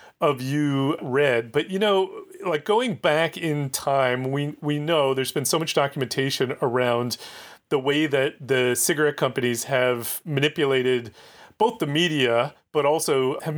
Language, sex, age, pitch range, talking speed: English, male, 30-49, 135-175 Hz, 150 wpm